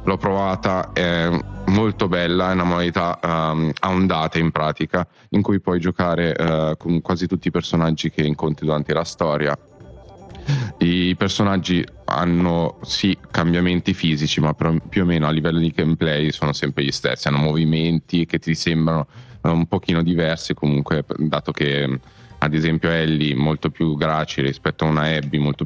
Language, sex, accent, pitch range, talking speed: Italian, male, native, 80-90 Hz, 160 wpm